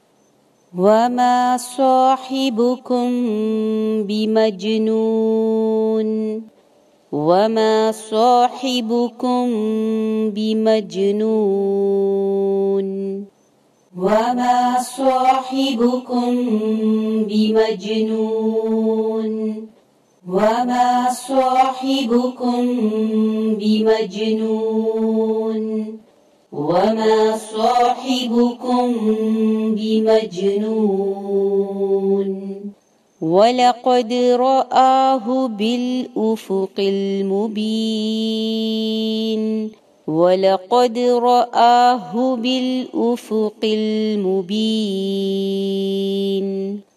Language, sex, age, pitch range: English, female, 40-59, 215-245 Hz